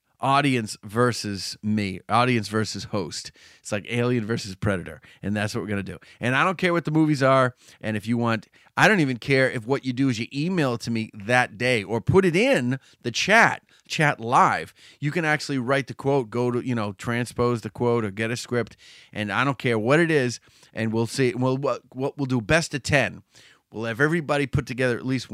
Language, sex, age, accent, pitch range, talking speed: English, male, 30-49, American, 105-135 Hz, 225 wpm